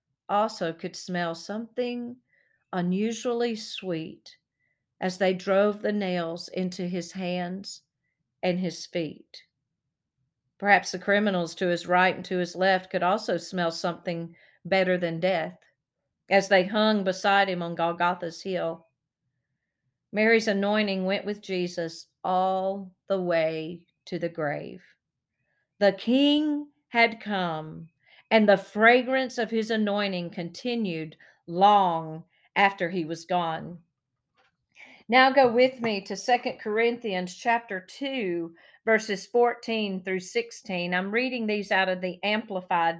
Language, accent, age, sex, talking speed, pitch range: English, American, 50-69, female, 125 wpm, 170-220 Hz